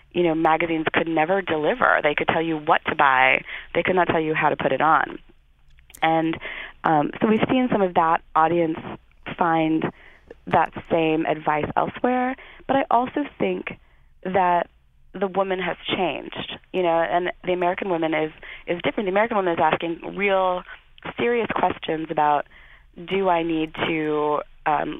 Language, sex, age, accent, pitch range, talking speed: English, female, 30-49, American, 150-175 Hz, 165 wpm